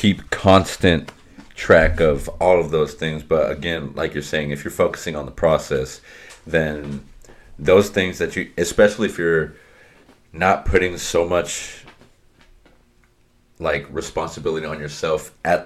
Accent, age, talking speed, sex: American, 30-49, 140 wpm, male